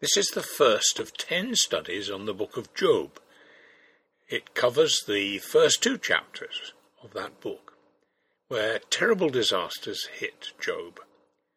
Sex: male